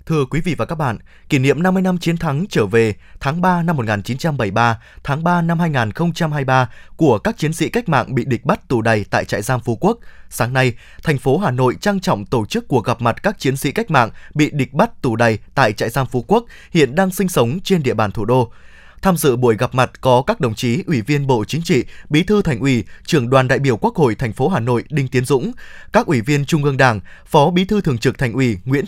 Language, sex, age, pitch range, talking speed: Vietnamese, male, 20-39, 125-170 Hz, 250 wpm